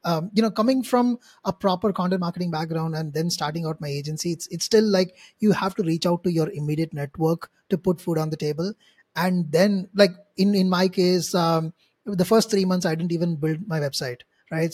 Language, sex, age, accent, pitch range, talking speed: English, male, 20-39, Indian, 165-205 Hz, 220 wpm